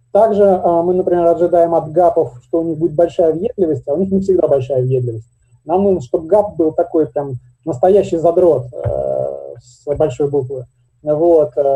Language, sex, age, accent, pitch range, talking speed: Russian, male, 20-39, native, 145-180 Hz, 170 wpm